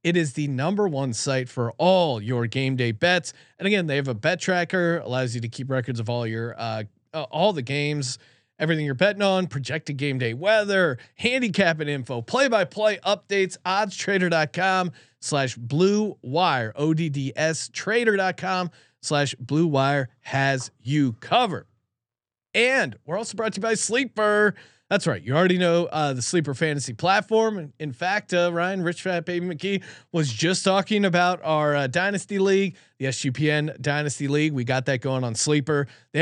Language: English